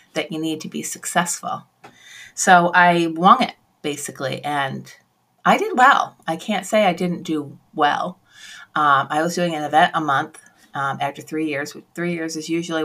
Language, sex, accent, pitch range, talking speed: English, female, American, 155-180 Hz, 175 wpm